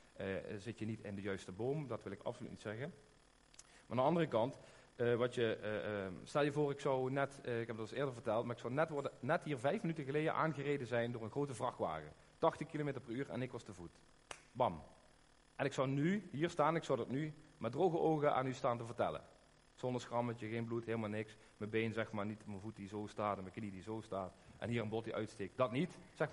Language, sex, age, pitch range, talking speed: Dutch, male, 40-59, 115-150 Hz, 255 wpm